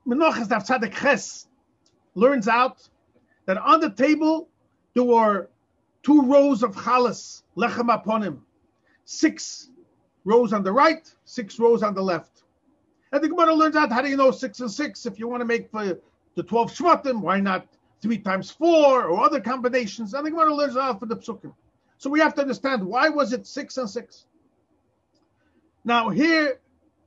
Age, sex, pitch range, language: 40-59, male, 215-290 Hz, English